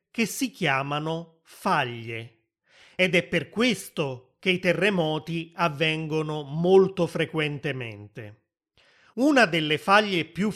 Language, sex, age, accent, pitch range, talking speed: Italian, male, 30-49, native, 150-205 Hz, 100 wpm